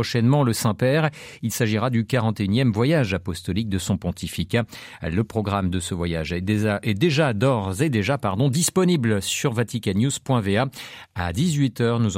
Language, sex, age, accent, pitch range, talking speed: French, male, 50-69, French, 105-140 Hz, 145 wpm